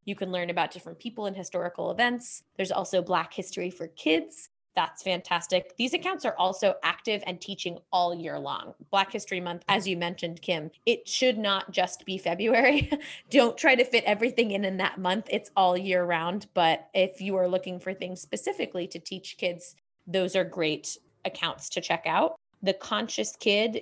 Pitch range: 180-220 Hz